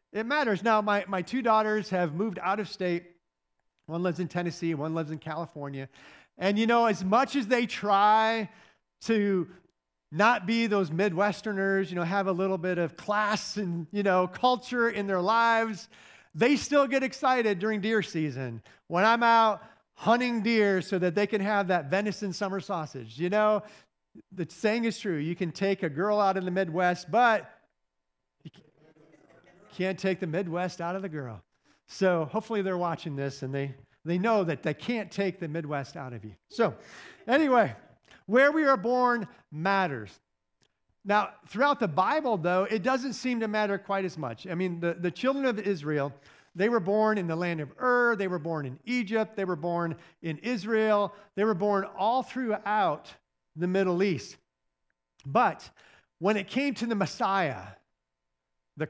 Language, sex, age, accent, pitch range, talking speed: English, male, 50-69, American, 170-220 Hz, 175 wpm